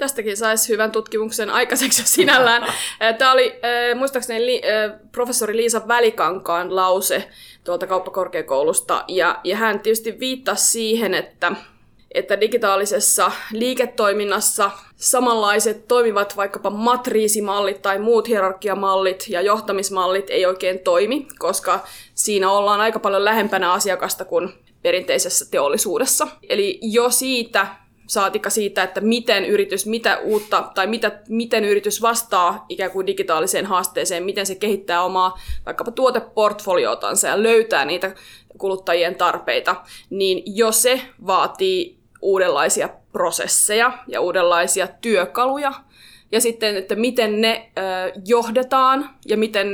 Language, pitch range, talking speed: Finnish, 195-245 Hz, 105 wpm